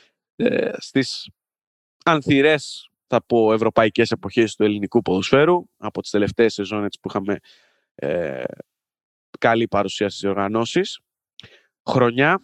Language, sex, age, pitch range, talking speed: Greek, male, 20-39, 110-140 Hz, 95 wpm